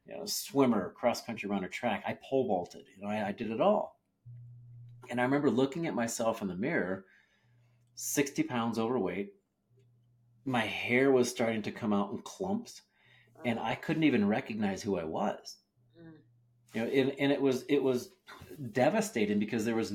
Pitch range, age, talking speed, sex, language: 110-125 Hz, 40-59, 175 wpm, male, English